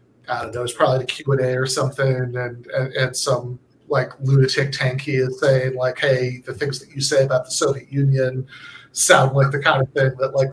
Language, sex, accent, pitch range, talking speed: English, male, American, 130-150 Hz, 215 wpm